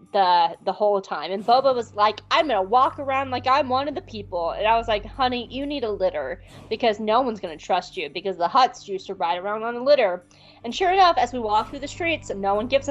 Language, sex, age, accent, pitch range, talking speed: English, female, 20-39, American, 195-255 Hz, 255 wpm